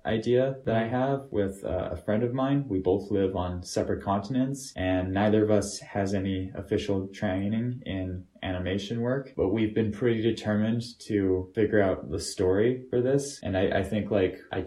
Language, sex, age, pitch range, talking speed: English, male, 20-39, 85-105 Hz, 185 wpm